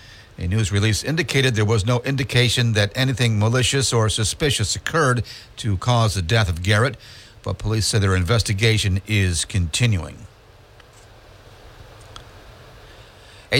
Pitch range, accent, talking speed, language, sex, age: 105-125 Hz, American, 125 wpm, English, male, 50-69